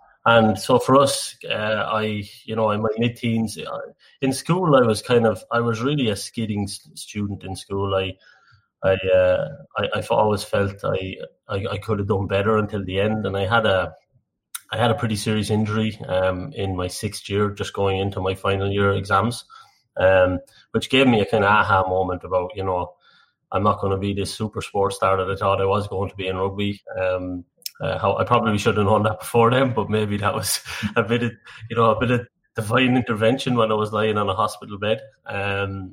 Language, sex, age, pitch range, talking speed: English, male, 20-39, 95-110 Hz, 220 wpm